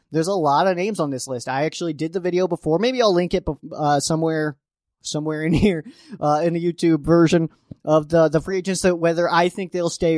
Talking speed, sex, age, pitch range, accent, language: 230 wpm, male, 20-39, 145-180 Hz, American, English